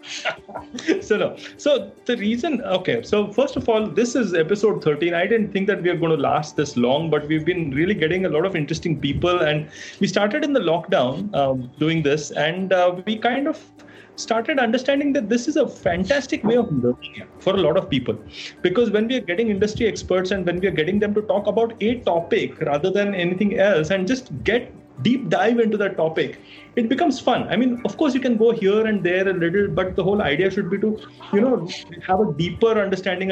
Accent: Indian